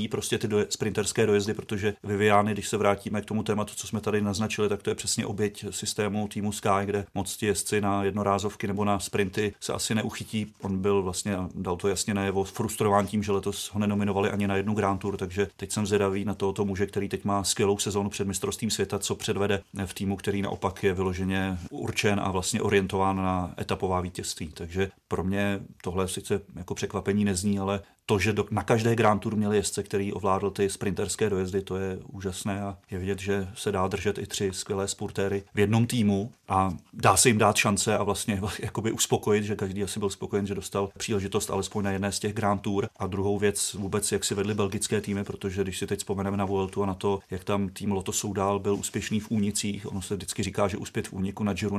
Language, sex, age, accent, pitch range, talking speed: Czech, male, 30-49, native, 100-105 Hz, 215 wpm